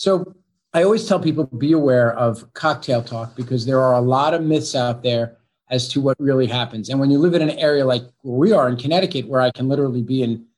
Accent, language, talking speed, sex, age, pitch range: American, English, 250 wpm, male, 40-59, 125-170 Hz